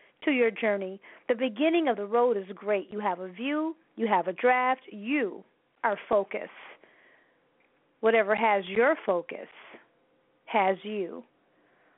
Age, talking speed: 40-59, 130 wpm